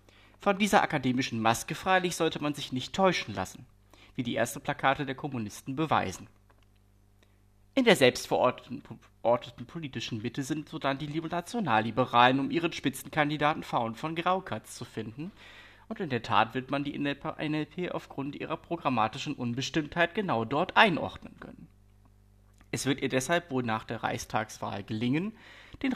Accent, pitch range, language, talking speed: German, 110-155 Hz, German, 140 wpm